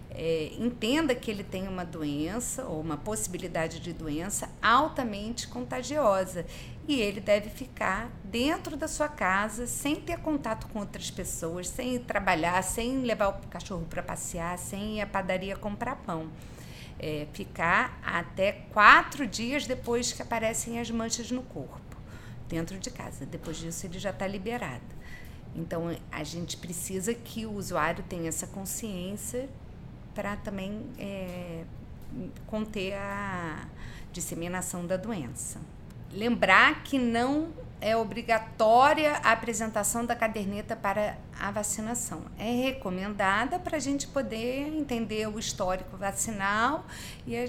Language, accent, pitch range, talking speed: Portuguese, Brazilian, 175-235 Hz, 130 wpm